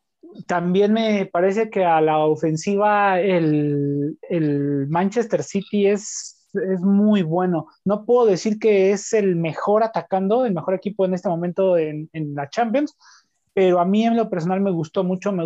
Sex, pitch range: male, 160-205 Hz